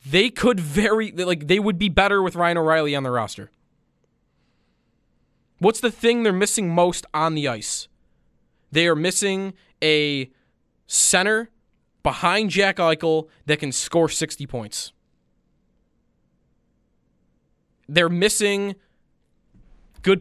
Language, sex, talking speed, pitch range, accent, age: English, male, 115 wpm, 145-190 Hz, American, 20-39